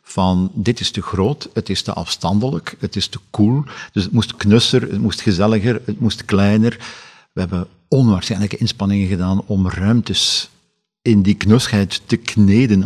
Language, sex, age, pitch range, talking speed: Dutch, male, 50-69, 95-110 Hz, 165 wpm